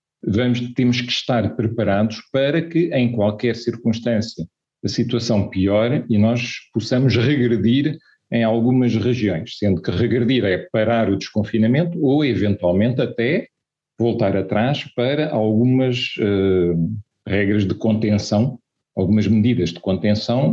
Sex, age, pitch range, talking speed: male, 40-59, 105-125 Hz, 115 wpm